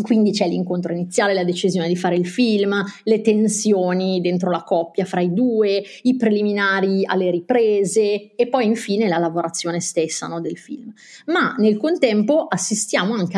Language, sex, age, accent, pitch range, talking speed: Italian, female, 30-49, native, 180-220 Hz, 155 wpm